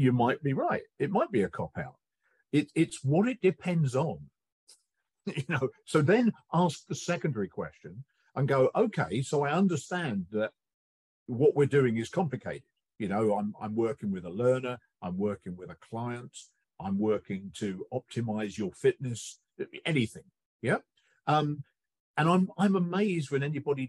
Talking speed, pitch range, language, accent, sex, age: 160 wpm, 110-155 Hz, English, British, male, 50-69